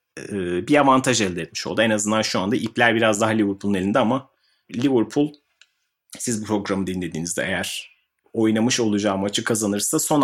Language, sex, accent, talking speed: Turkish, male, native, 160 wpm